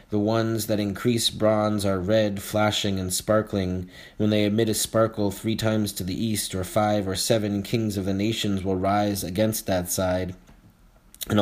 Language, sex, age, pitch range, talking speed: English, male, 30-49, 95-110 Hz, 180 wpm